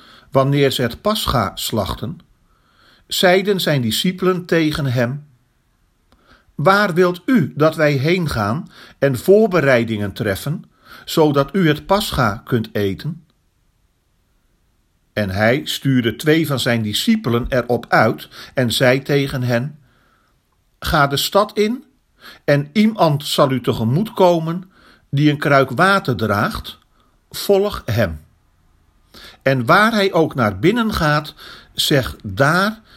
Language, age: Dutch, 50-69